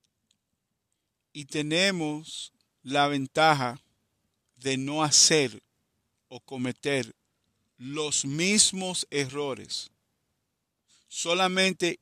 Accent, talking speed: Venezuelan, 65 wpm